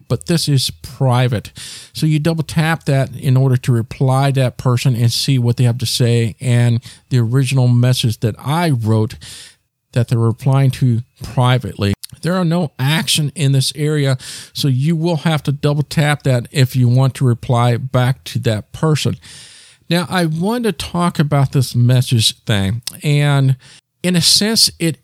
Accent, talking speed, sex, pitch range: American, 175 wpm, male, 125-155 Hz